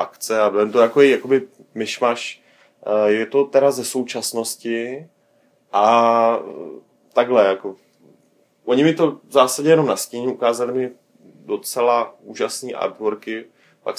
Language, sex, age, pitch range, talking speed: Czech, male, 30-49, 110-125 Hz, 125 wpm